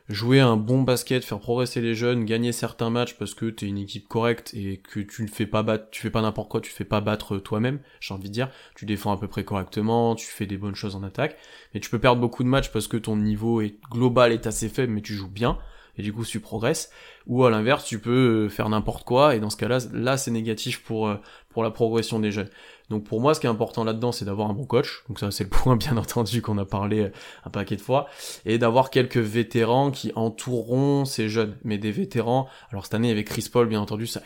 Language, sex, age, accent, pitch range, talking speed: French, male, 20-39, French, 105-120 Hz, 255 wpm